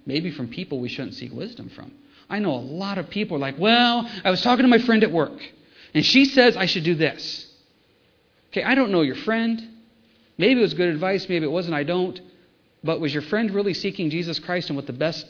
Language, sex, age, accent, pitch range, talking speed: English, male, 40-59, American, 145-215 Hz, 235 wpm